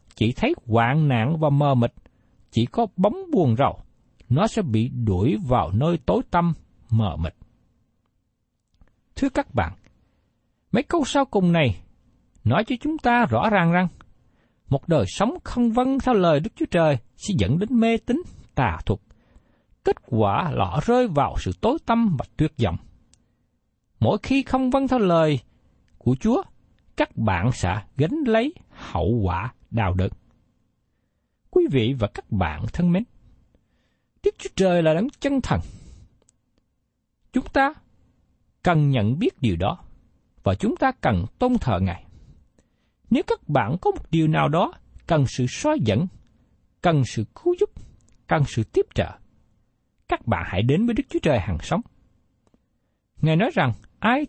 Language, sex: Vietnamese, male